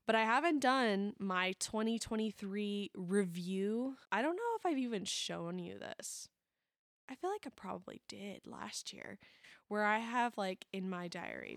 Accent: American